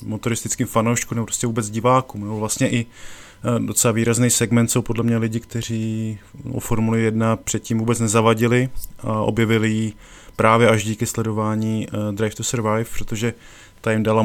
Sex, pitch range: male, 105-115 Hz